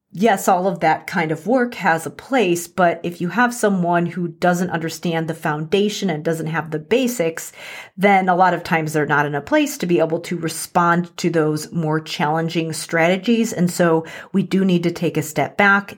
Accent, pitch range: American, 160-195 Hz